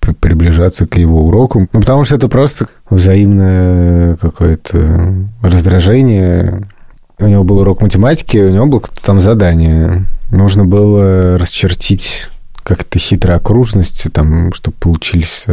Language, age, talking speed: Russian, 20-39, 120 wpm